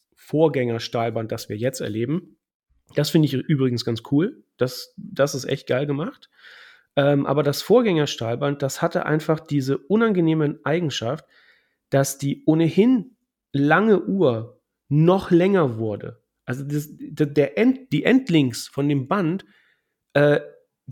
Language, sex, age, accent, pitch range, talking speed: German, male, 40-59, German, 130-160 Hz, 120 wpm